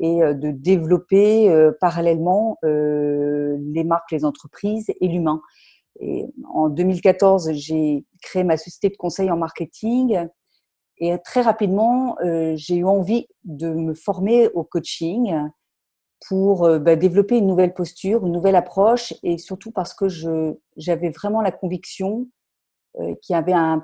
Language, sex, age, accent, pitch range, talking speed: French, female, 50-69, French, 160-195 Hz, 135 wpm